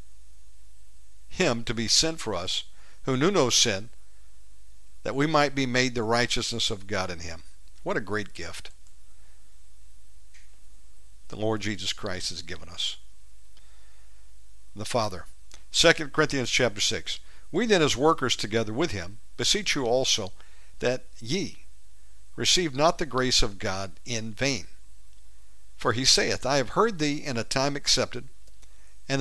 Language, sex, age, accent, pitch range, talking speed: English, male, 50-69, American, 90-135 Hz, 145 wpm